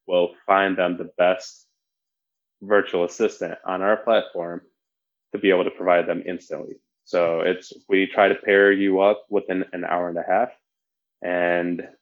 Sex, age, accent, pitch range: male, 20-39, American, 85-100 Hz